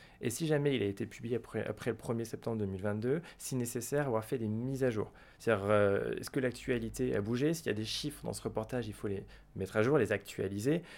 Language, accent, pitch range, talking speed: French, French, 100-135 Hz, 240 wpm